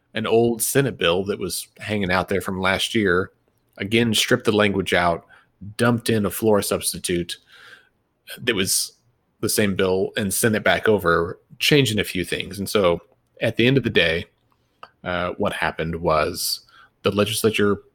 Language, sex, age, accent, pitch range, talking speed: English, male, 30-49, American, 95-115 Hz, 165 wpm